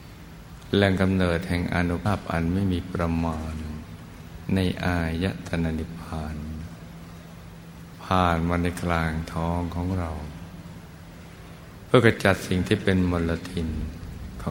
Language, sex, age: Thai, male, 60-79